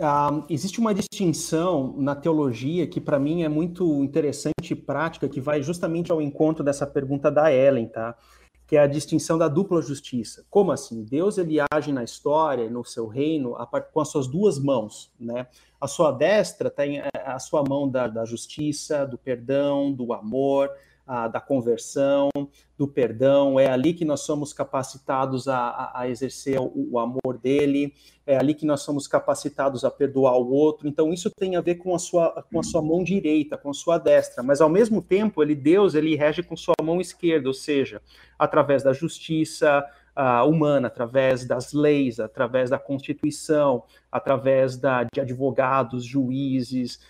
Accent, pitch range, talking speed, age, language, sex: Brazilian, 130-155 Hz, 175 wpm, 30-49, Portuguese, male